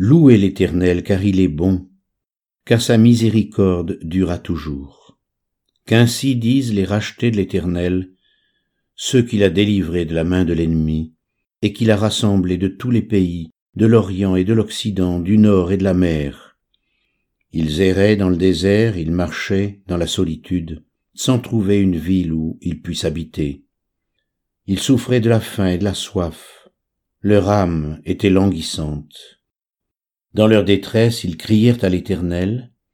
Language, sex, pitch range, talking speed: French, male, 85-105 Hz, 150 wpm